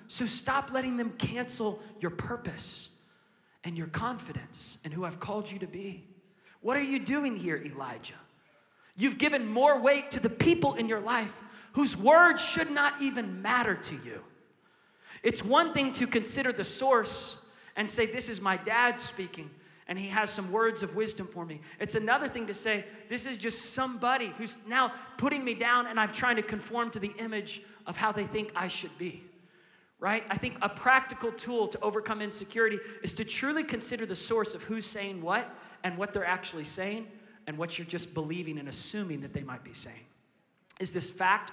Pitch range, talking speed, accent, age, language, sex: 180-240 Hz, 190 wpm, American, 30-49, English, male